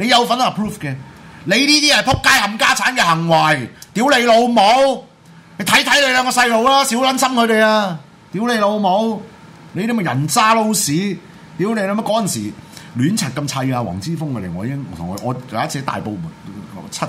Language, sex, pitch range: Chinese, male, 125-195 Hz